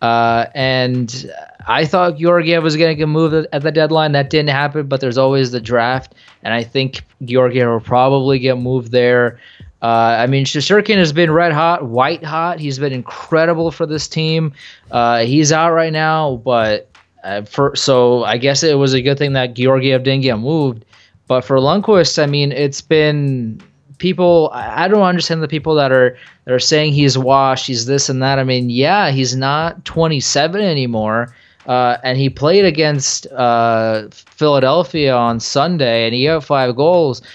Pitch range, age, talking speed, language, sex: 125-160 Hz, 20-39, 180 wpm, English, male